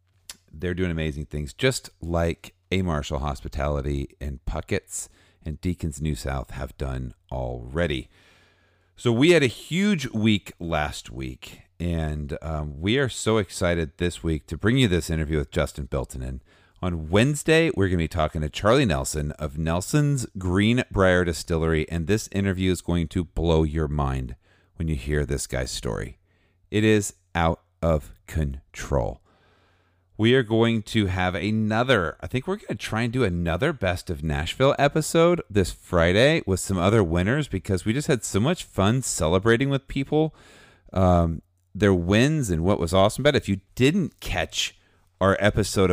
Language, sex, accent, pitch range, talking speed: English, male, American, 80-100 Hz, 165 wpm